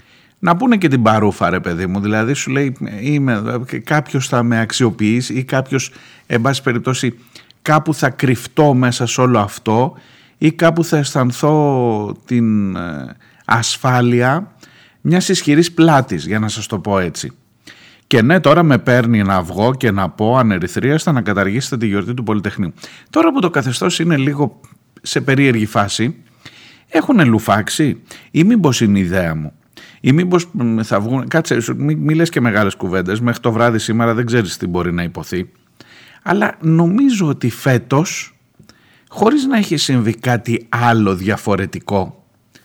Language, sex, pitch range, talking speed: Greek, male, 110-145 Hz, 155 wpm